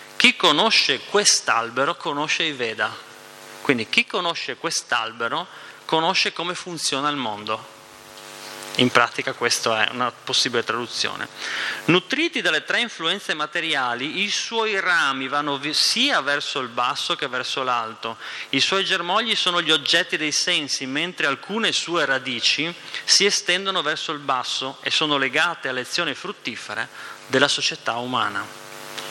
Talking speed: 130 wpm